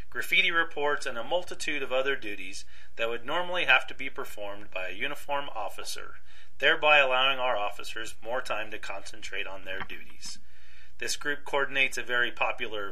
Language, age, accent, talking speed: English, 40-59, American, 165 wpm